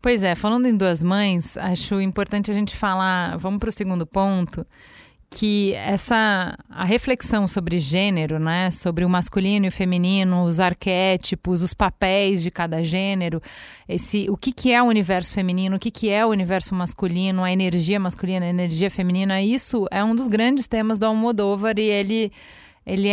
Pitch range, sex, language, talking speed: 185-220 Hz, female, Portuguese, 175 wpm